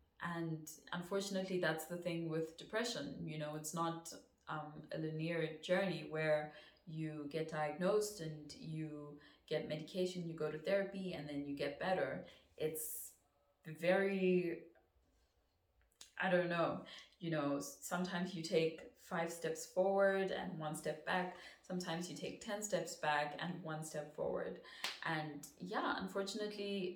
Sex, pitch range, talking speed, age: female, 150-185 Hz, 140 wpm, 20-39